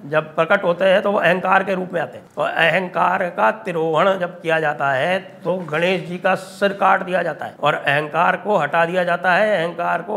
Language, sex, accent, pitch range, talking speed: English, male, Indian, 135-185 Hz, 225 wpm